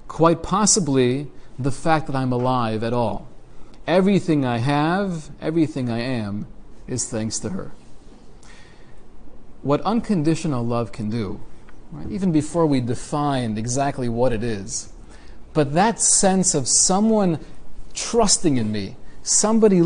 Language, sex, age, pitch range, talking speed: English, male, 40-59, 125-185 Hz, 125 wpm